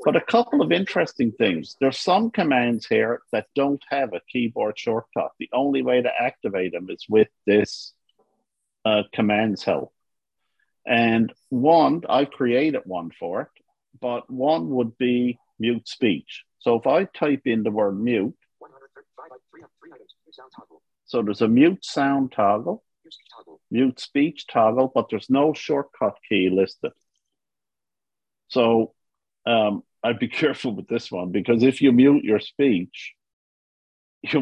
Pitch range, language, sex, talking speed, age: 110-135 Hz, English, male, 140 wpm, 50-69